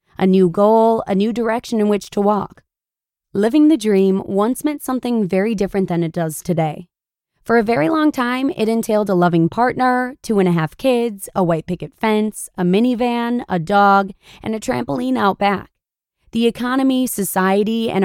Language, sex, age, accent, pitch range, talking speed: English, female, 20-39, American, 185-240 Hz, 180 wpm